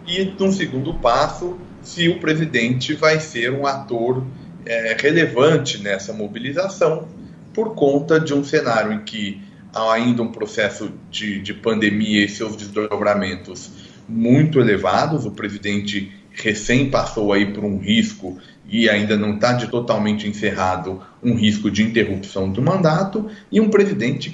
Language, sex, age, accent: Portuguese, male, 40-59, Brazilian